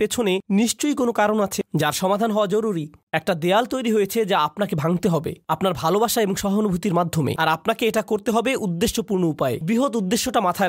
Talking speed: 180 wpm